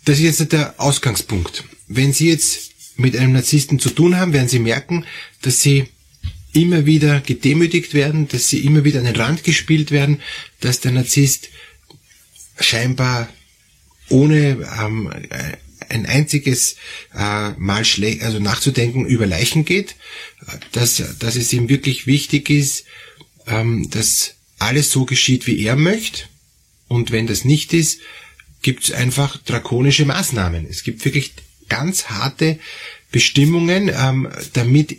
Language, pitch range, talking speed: German, 120-150 Hz, 125 wpm